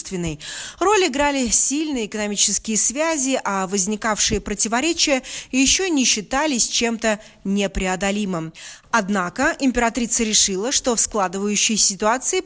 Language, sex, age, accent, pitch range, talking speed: Russian, female, 20-39, native, 205-285 Hz, 95 wpm